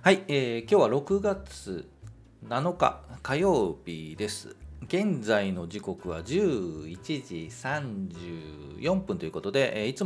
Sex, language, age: male, Japanese, 40-59